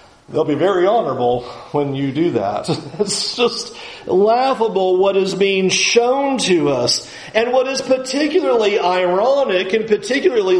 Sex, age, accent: male, 40-59, American